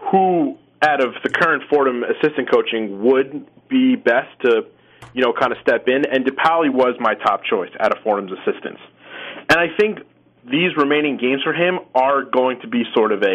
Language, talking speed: English, 195 wpm